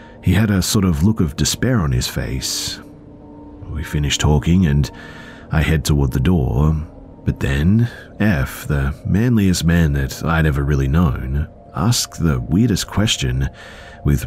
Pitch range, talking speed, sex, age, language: 70-95 Hz, 150 wpm, male, 40-59, English